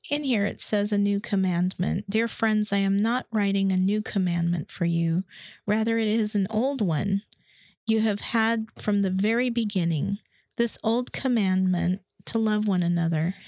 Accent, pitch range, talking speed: American, 185-225 Hz, 170 wpm